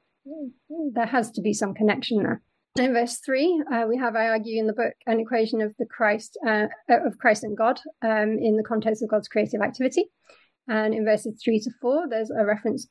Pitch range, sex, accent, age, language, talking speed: 210-245 Hz, female, British, 30-49, English, 210 wpm